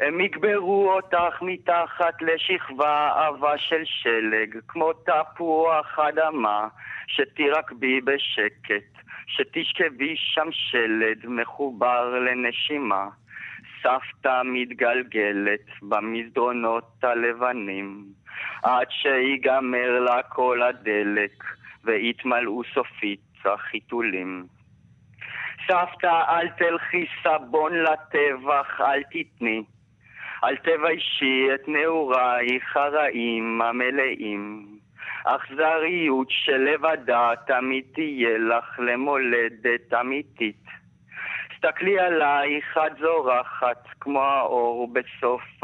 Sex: male